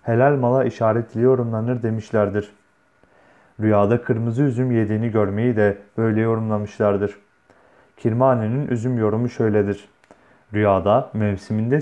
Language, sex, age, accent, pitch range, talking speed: Turkish, male, 30-49, native, 105-125 Hz, 95 wpm